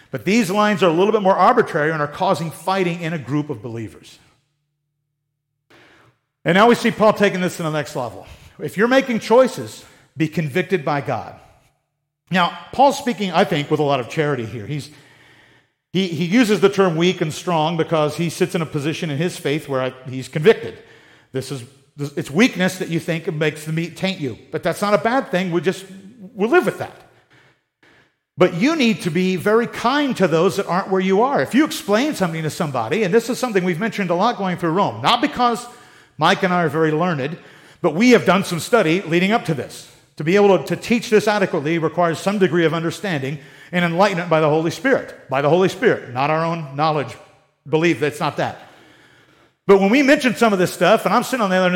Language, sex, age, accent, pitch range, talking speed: English, male, 50-69, American, 150-195 Hz, 220 wpm